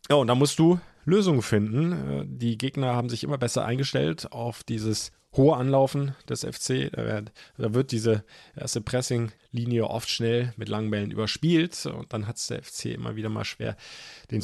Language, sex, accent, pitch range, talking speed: German, male, German, 110-135 Hz, 180 wpm